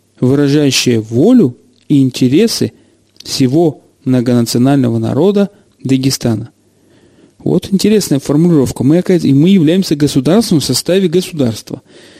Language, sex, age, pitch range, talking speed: Russian, male, 40-59, 135-175 Hz, 90 wpm